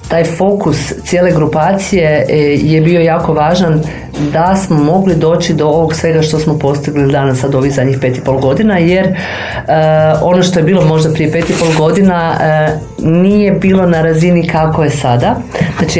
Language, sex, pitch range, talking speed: Croatian, female, 145-170 Hz, 175 wpm